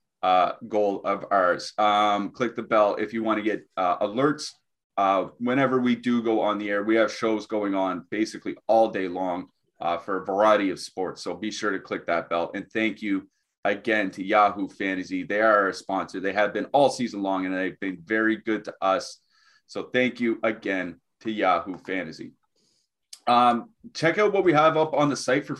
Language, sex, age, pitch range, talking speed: English, male, 30-49, 105-135 Hz, 205 wpm